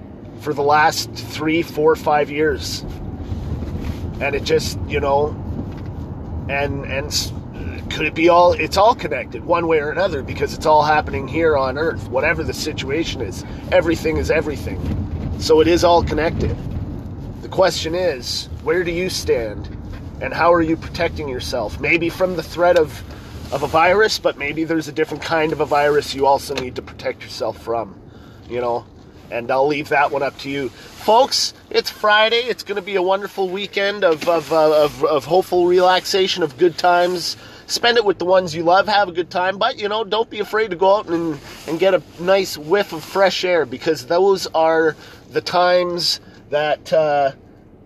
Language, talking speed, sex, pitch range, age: English, 185 wpm, male, 140-180 Hz, 30-49